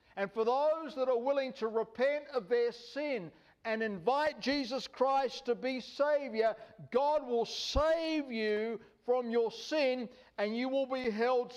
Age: 60-79